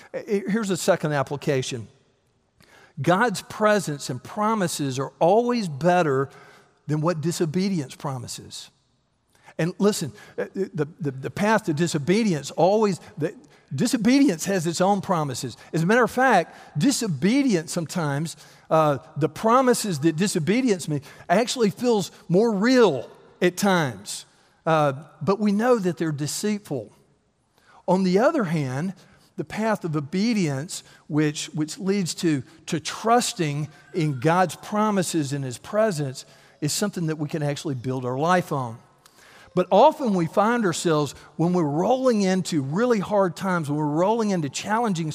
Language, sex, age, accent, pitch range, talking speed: English, male, 50-69, American, 150-205 Hz, 135 wpm